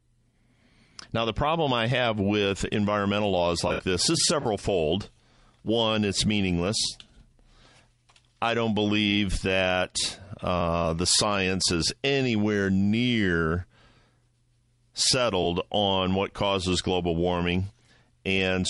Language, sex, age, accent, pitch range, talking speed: English, male, 50-69, American, 90-115 Hz, 105 wpm